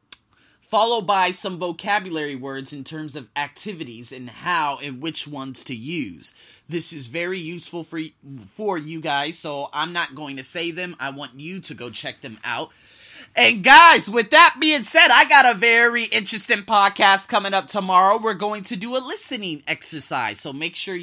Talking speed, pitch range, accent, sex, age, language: 180 wpm, 155-215 Hz, American, male, 30-49, English